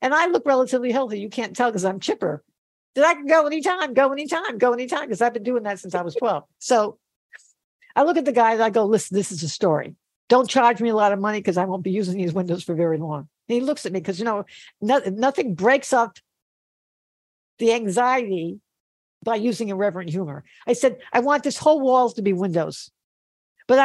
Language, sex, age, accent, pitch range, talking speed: English, female, 60-79, American, 200-280 Hz, 225 wpm